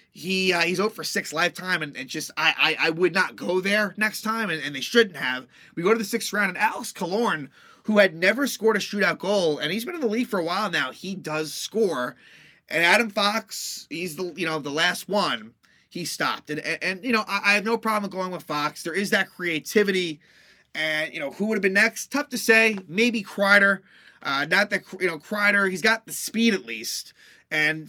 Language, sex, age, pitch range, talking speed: English, male, 30-49, 170-225 Hz, 230 wpm